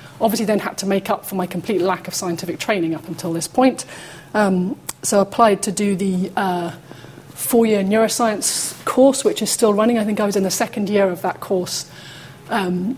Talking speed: 205 wpm